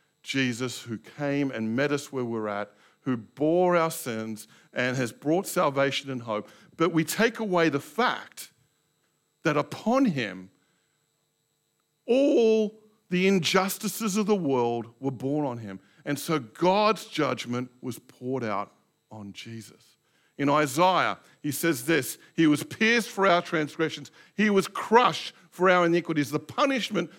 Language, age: English, 50-69